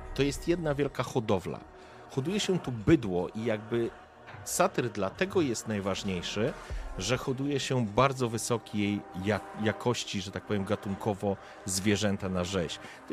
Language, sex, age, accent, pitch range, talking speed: Polish, male, 40-59, native, 100-125 Hz, 135 wpm